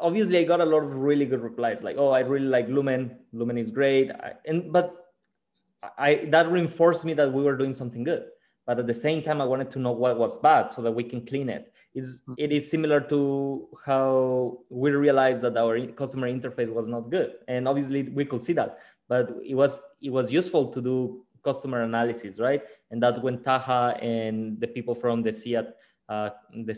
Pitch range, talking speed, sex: 120-155 Hz, 200 wpm, male